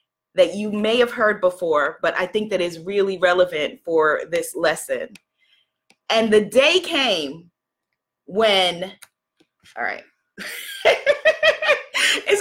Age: 30-49